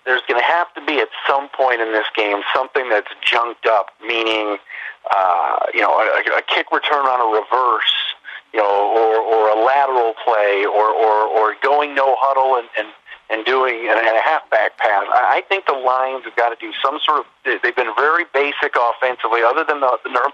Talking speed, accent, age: 205 wpm, American, 40-59